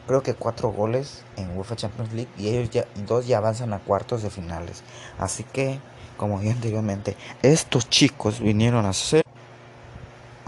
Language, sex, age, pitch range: Spanish, male, 30-49, 100-125 Hz